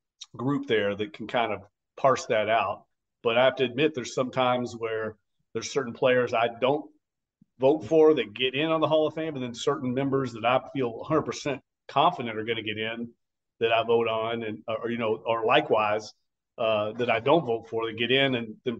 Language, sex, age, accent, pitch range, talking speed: English, male, 40-59, American, 110-135 Hz, 225 wpm